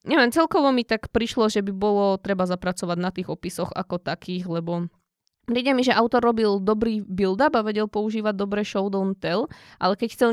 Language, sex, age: Slovak, female, 20-39